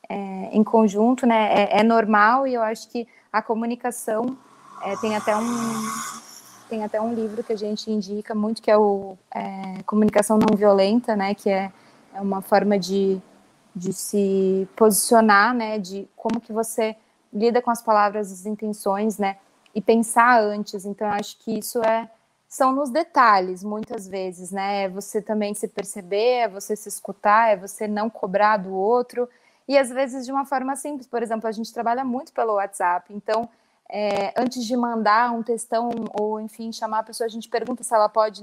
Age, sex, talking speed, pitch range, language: 20-39, female, 185 wpm, 210-240 Hz, Portuguese